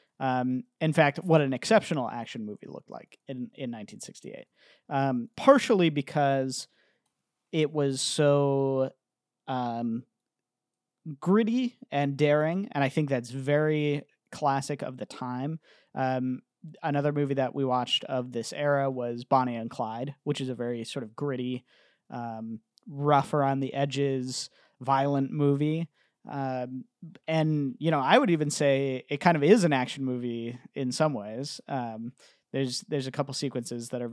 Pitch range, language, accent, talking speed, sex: 125-150 Hz, English, American, 150 wpm, male